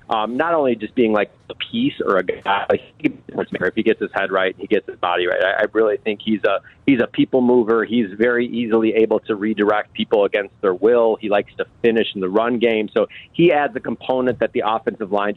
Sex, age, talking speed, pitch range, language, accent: male, 30-49, 240 wpm, 110-155 Hz, English, American